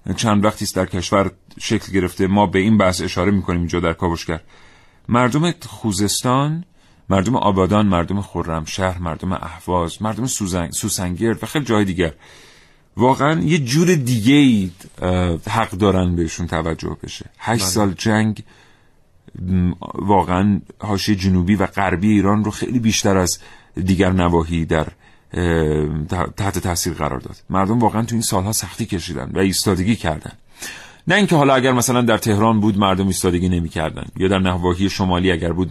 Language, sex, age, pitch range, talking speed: Persian, male, 40-59, 90-110 Hz, 145 wpm